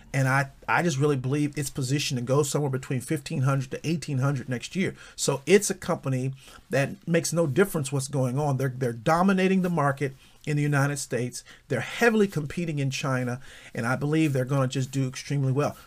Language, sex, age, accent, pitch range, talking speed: English, male, 40-59, American, 135-175 Hz, 195 wpm